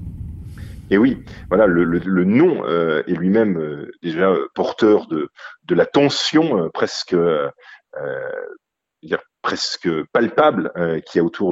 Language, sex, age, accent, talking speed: French, male, 30-49, French, 145 wpm